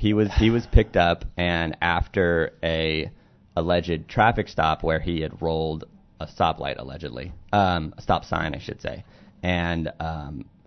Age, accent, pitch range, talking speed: 30-49, American, 80-95 Hz, 155 wpm